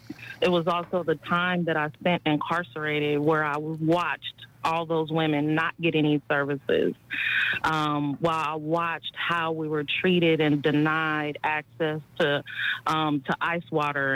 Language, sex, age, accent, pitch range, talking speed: English, female, 30-49, American, 150-170 Hz, 150 wpm